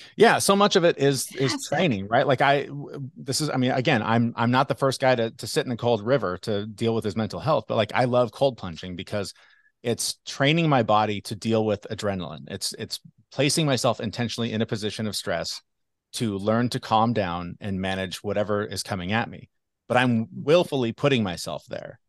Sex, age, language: male, 30-49, English